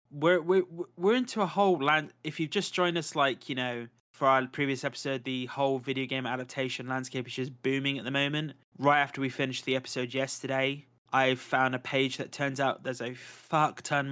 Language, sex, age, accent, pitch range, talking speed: English, male, 20-39, British, 130-155 Hz, 210 wpm